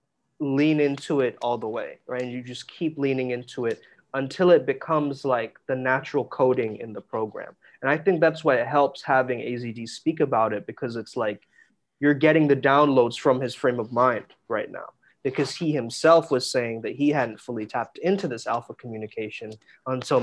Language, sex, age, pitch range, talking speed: English, male, 20-39, 120-150 Hz, 195 wpm